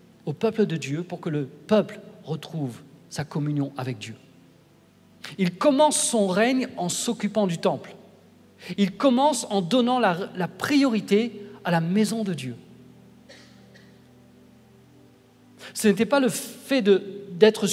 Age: 50-69